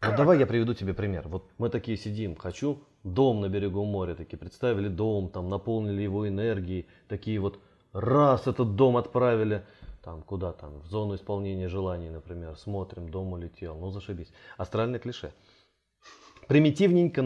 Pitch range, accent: 95-125 Hz, native